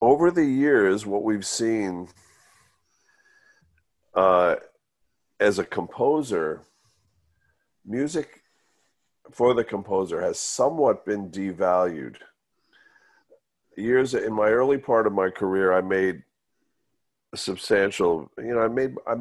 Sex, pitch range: male, 95-135 Hz